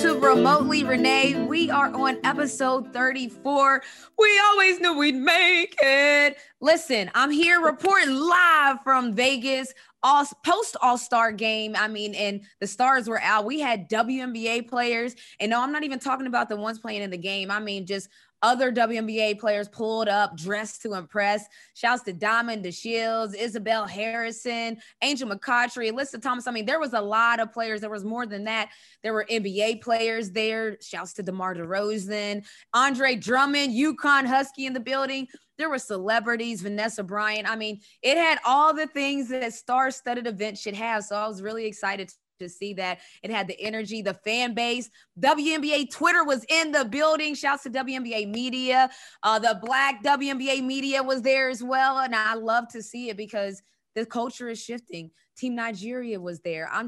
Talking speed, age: 180 wpm, 20-39